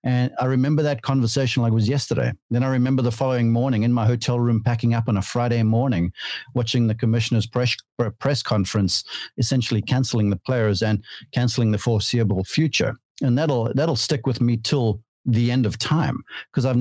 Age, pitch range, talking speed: 50-69, 110-130 Hz, 190 wpm